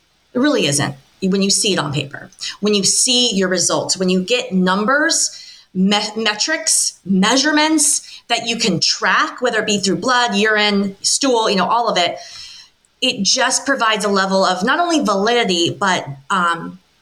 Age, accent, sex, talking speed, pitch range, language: 30-49, American, female, 165 wpm, 185-245 Hz, English